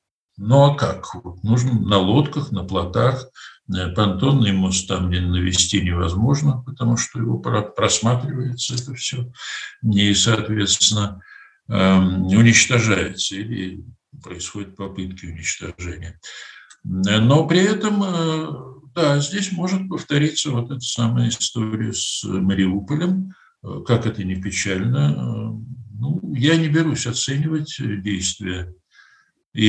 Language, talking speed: Russian, 115 wpm